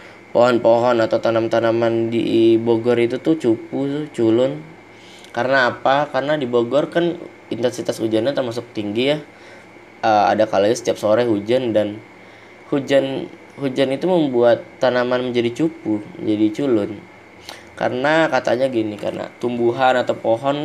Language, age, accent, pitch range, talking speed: Indonesian, 20-39, native, 110-140 Hz, 125 wpm